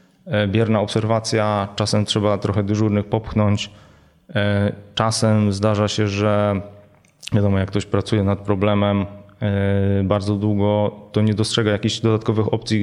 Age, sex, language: 20-39, male, Polish